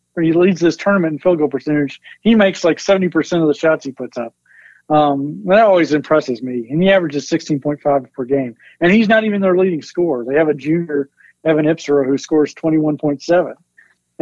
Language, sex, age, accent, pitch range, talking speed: English, male, 50-69, American, 145-180 Hz, 190 wpm